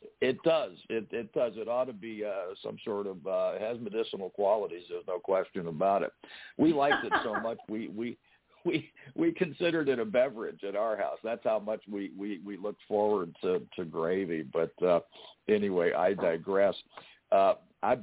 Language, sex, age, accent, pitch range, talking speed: English, male, 60-79, American, 100-150 Hz, 185 wpm